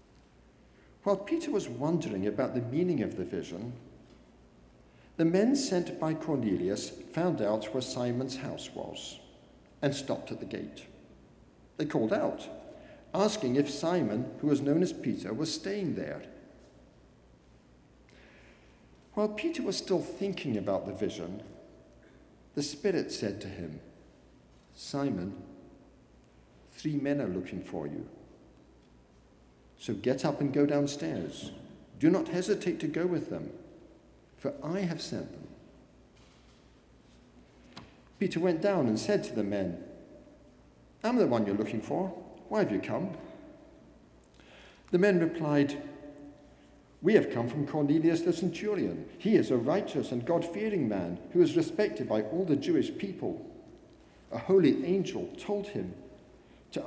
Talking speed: 135 wpm